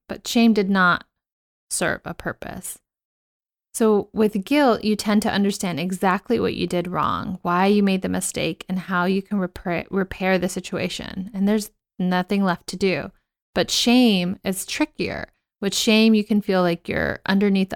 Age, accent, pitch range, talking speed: 30-49, American, 180-205 Hz, 170 wpm